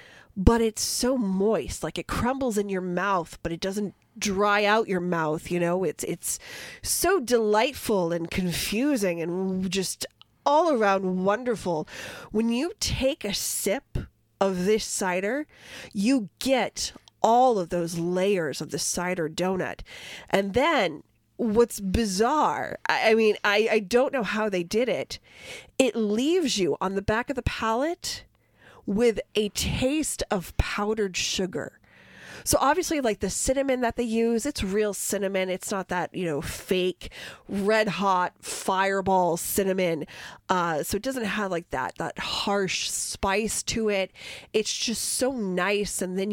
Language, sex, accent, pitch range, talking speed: English, female, American, 185-230 Hz, 150 wpm